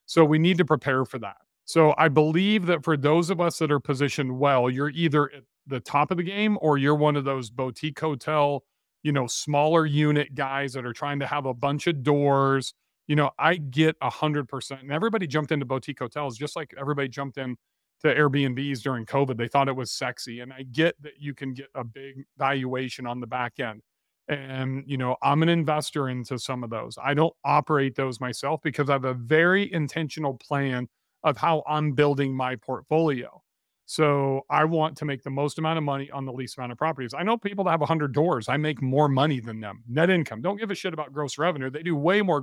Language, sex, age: English, male, 40-59